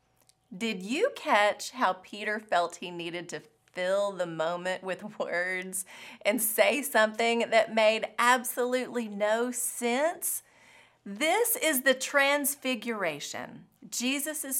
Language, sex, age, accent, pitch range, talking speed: English, female, 30-49, American, 205-285 Hz, 110 wpm